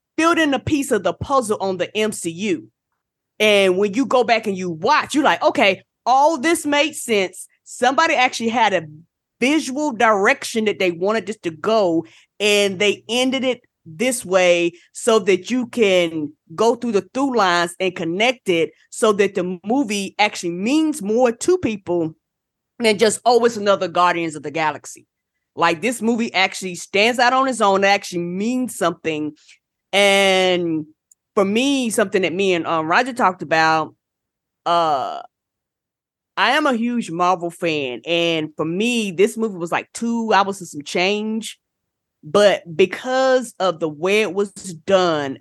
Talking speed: 165 wpm